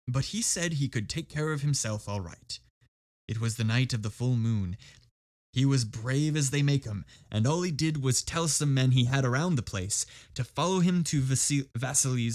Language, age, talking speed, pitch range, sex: English, 20-39, 215 wpm, 110-145 Hz, male